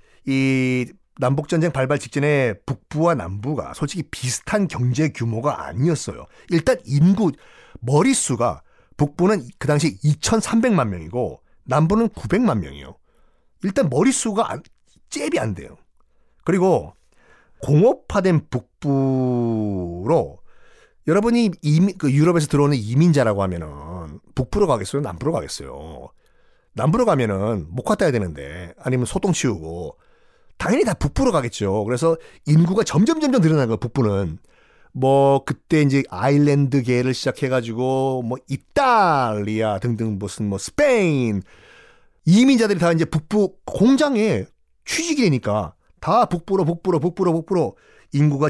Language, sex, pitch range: Korean, male, 120-175 Hz